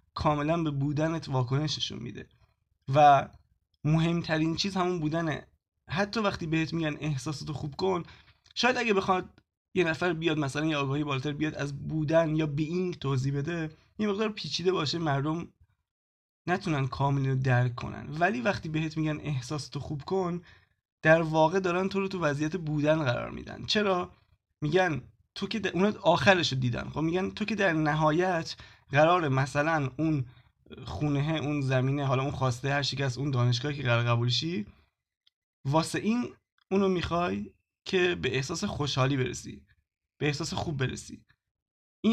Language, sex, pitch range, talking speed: Persian, male, 135-180 Hz, 150 wpm